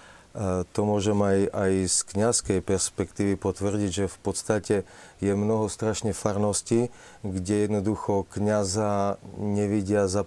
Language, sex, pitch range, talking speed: Slovak, male, 100-120 Hz, 115 wpm